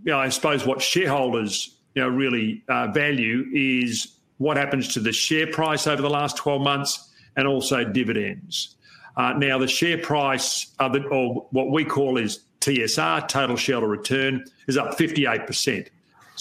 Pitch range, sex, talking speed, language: 120-145 Hz, male, 145 wpm, English